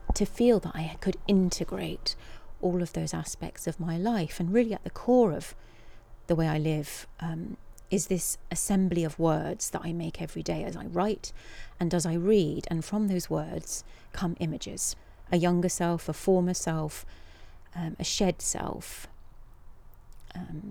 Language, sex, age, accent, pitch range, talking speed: English, female, 40-59, British, 155-190 Hz, 170 wpm